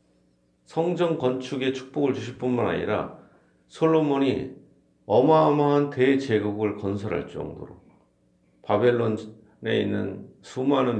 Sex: male